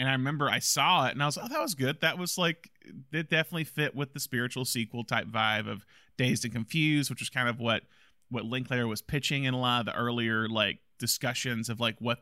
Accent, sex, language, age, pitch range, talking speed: American, male, English, 30-49, 115-140 Hz, 245 wpm